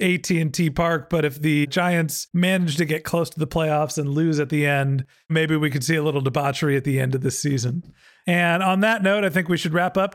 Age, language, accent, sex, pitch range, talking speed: 40-59, English, American, male, 155-185 Hz, 245 wpm